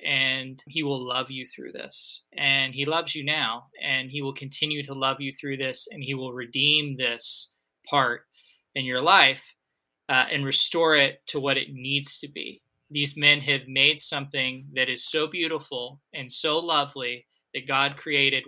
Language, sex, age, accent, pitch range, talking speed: English, male, 20-39, American, 130-150 Hz, 180 wpm